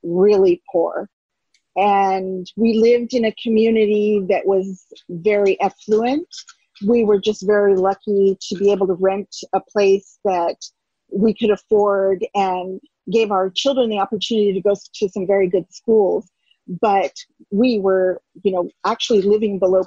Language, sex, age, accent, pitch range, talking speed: English, female, 40-59, American, 195-230 Hz, 150 wpm